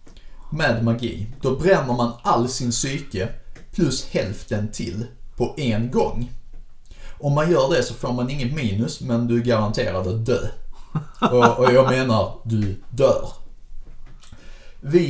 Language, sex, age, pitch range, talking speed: Swedish, male, 30-49, 105-130 Hz, 140 wpm